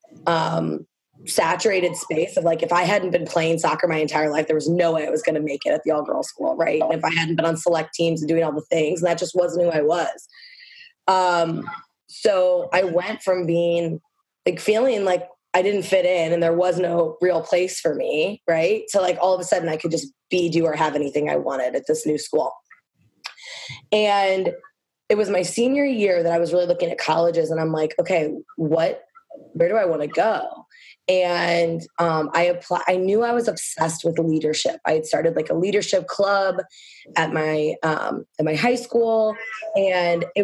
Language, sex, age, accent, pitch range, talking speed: English, female, 20-39, American, 160-195 Hz, 210 wpm